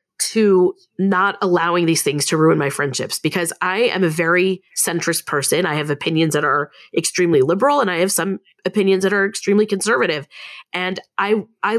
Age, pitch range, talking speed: 30-49, 165-200 Hz, 180 wpm